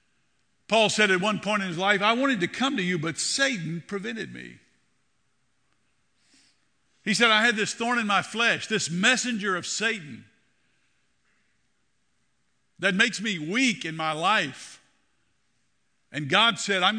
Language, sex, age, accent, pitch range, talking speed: English, male, 50-69, American, 170-225 Hz, 150 wpm